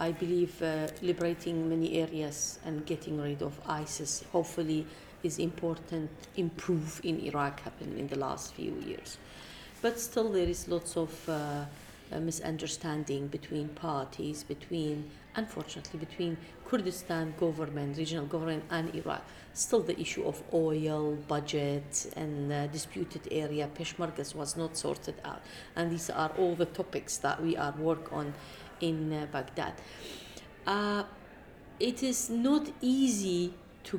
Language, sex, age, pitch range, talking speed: English, female, 40-59, 155-185 Hz, 140 wpm